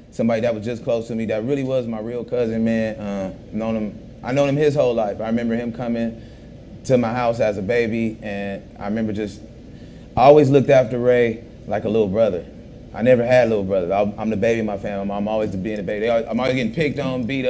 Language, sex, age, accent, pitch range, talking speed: English, male, 30-49, American, 115-135 Hz, 235 wpm